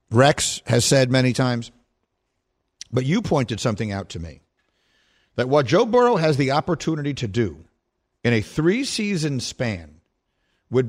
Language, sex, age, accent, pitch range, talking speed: English, male, 50-69, American, 115-160 Hz, 145 wpm